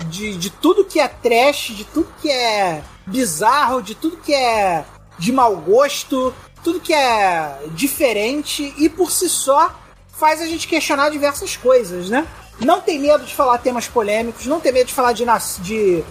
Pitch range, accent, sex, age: 220-300 Hz, Brazilian, male, 30-49